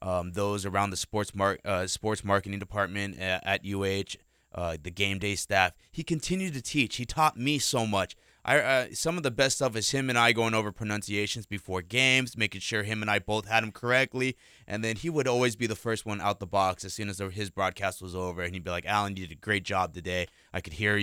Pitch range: 100-140 Hz